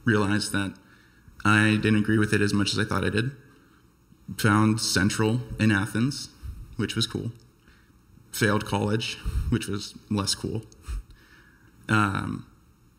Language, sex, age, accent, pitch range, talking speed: English, male, 20-39, American, 95-110 Hz, 130 wpm